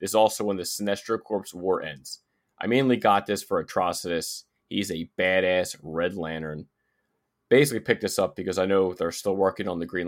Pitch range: 95-115 Hz